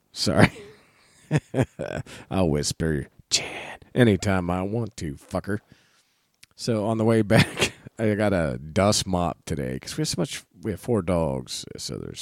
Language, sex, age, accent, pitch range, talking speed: English, male, 40-59, American, 85-115 Hz, 155 wpm